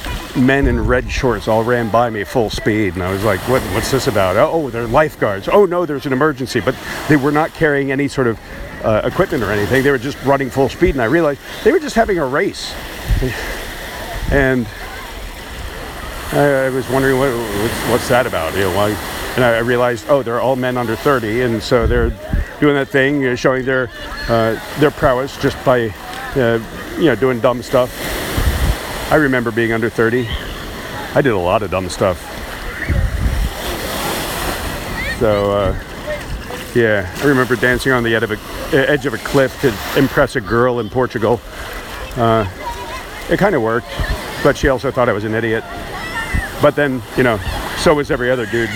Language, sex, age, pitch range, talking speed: English, male, 50-69, 110-135 Hz, 180 wpm